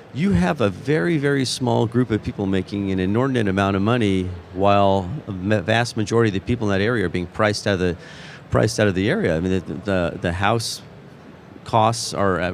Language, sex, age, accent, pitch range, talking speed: English, male, 40-59, American, 100-125 Hz, 210 wpm